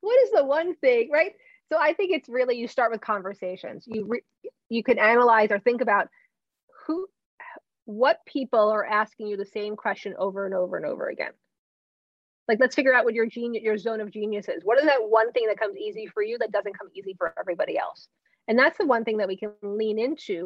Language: English